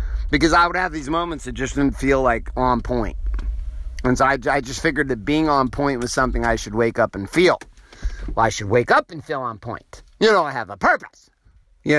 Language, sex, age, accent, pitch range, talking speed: English, male, 50-69, American, 115-170 Hz, 235 wpm